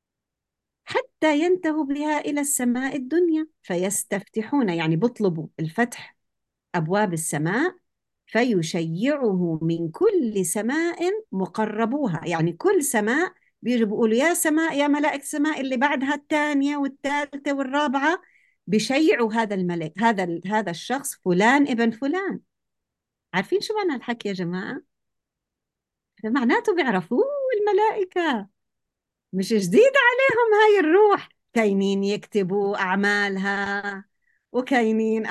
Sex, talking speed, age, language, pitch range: female, 100 wpm, 50-69, Arabic, 185-290 Hz